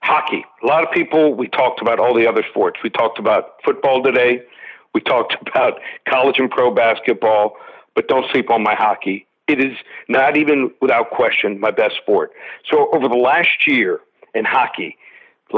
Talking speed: 180 wpm